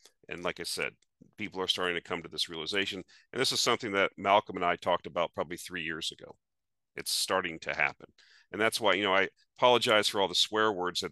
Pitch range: 90-110 Hz